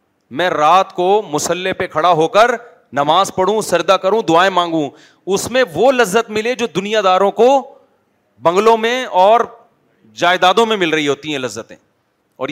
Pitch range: 130-170 Hz